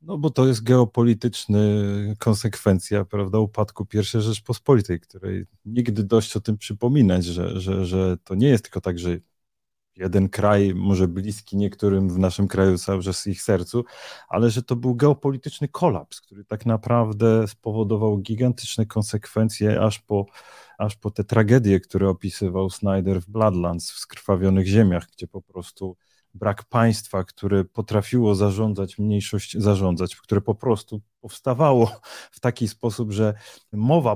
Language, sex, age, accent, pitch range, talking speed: Polish, male, 30-49, native, 100-120 Hz, 145 wpm